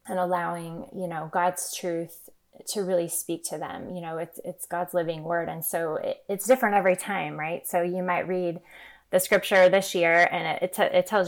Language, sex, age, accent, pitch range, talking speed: English, female, 20-39, American, 170-185 Hz, 215 wpm